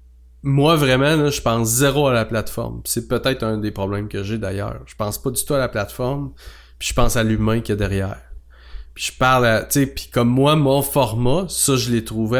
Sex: male